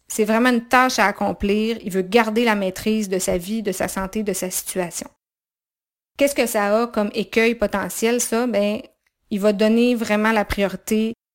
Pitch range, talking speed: 195-220 Hz, 185 wpm